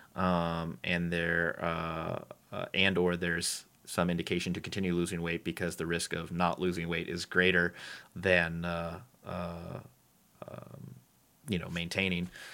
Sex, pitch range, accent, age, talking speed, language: male, 90-110 Hz, American, 30-49, 145 wpm, English